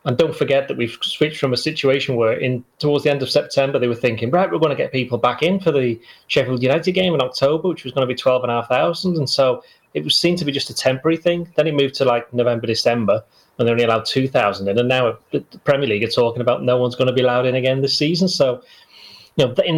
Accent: British